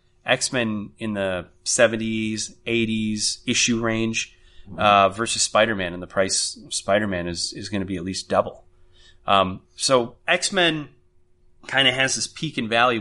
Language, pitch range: English, 95-125 Hz